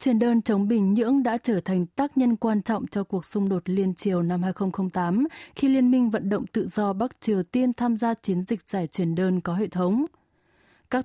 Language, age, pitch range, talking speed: Vietnamese, 20-39, 185-235 Hz, 225 wpm